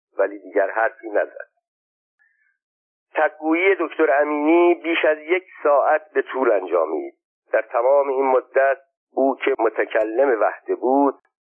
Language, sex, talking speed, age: Persian, male, 120 wpm, 50-69